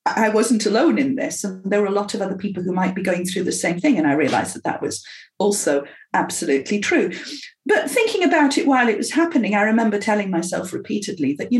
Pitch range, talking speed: 185-275 Hz, 235 wpm